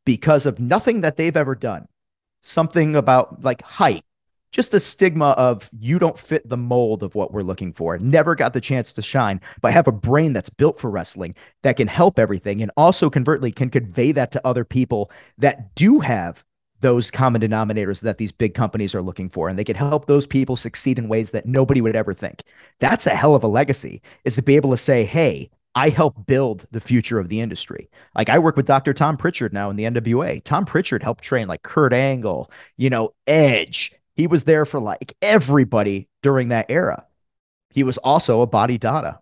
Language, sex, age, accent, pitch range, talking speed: English, male, 40-59, American, 115-150 Hz, 210 wpm